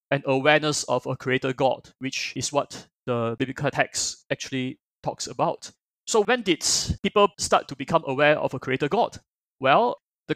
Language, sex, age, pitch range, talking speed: English, male, 20-39, 135-165 Hz, 170 wpm